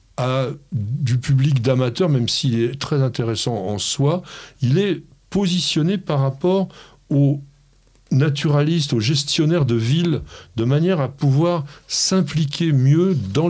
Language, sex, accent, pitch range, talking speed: French, male, French, 115-145 Hz, 130 wpm